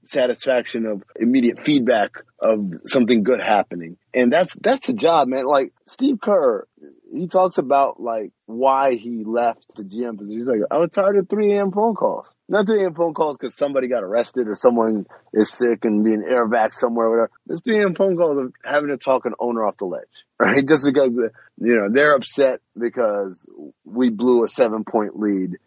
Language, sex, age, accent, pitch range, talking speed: English, male, 30-49, American, 115-190 Hz, 190 wpm